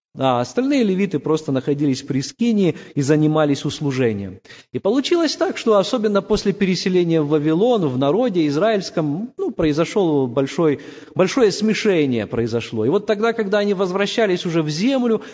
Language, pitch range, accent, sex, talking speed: Russian, 150-220 Hz, native, male, 150 wpm